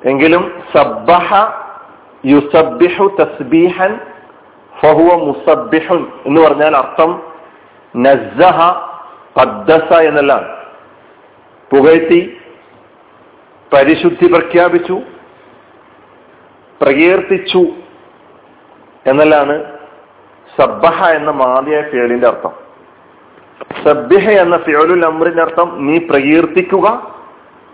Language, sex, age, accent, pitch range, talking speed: Malayalam, male, 50-69, native, 150-185 Hz, 65 wpm